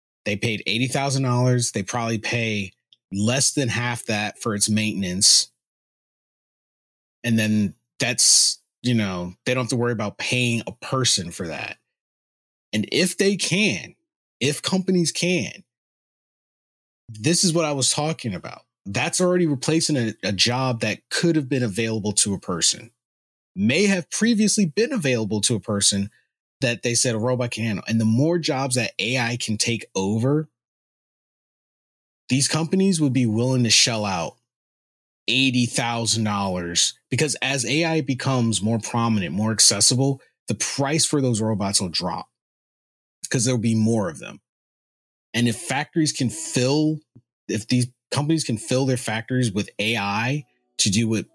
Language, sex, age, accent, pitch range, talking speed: English, male, 30-49, American, 110-140 Hz, 150 wpm